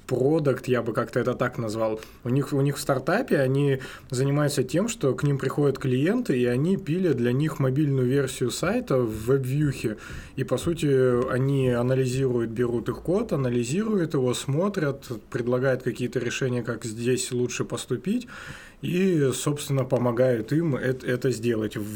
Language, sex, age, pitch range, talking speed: Russian, male, 20-39, 120-145 Hz, 150 wpm